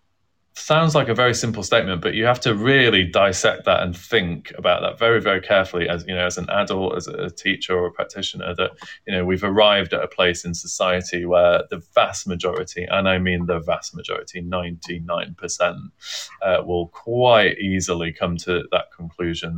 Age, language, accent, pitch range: 20-39, English, British, 90-105 Hz